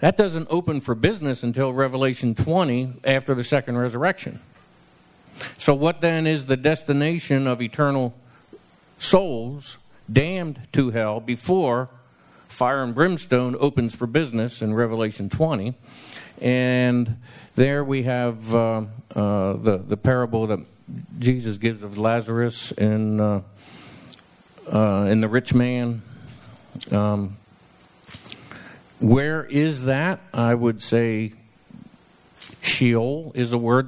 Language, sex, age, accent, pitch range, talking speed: English, male, 50-69, American, 115-145 Hz, 115 wpm